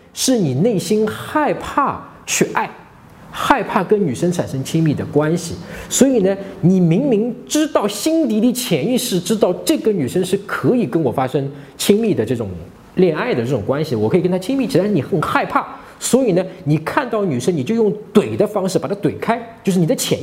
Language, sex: Chinese, male